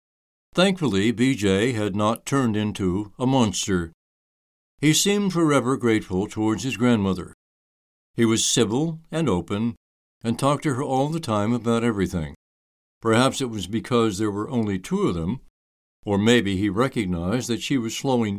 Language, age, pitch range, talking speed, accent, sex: English, 60-79, 95-130 Hz, 155 wpm, American, male